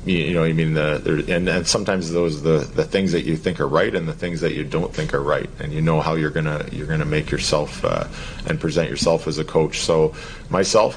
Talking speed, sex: 255 wpm, male